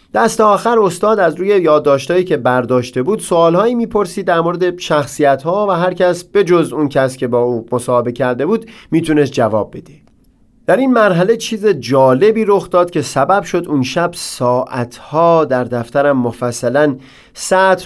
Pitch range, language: 130-175 Hz, Persian